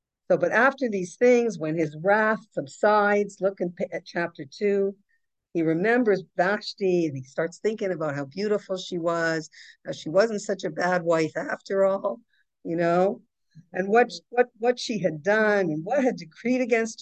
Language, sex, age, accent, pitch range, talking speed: English, female, 50-69, American, 155-210 Hz, 175 wpm